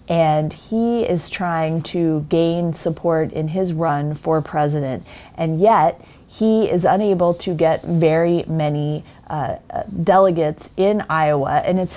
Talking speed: 135 wpm